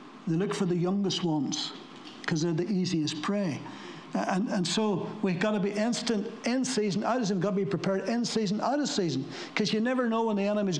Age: 60-79